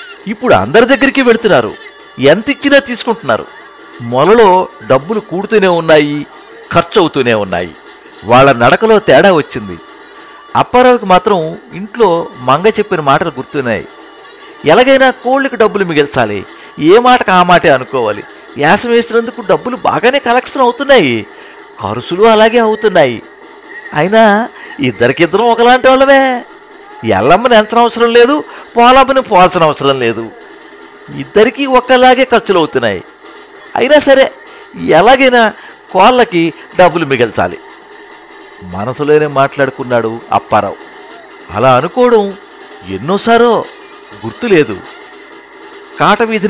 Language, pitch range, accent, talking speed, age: Telugu, 165-265 Hz, native, 95 wpm, 60-79